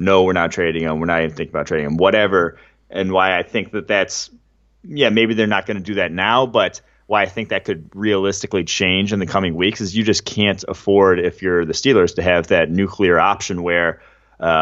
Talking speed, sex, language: 230 wpm, male, English